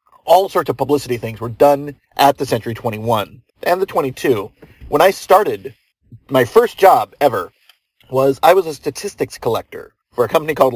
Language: English